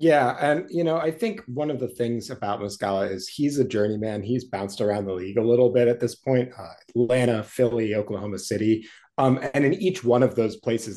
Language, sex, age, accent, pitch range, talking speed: English, male, 30-49, American, 105-135 Hz, 220 wpm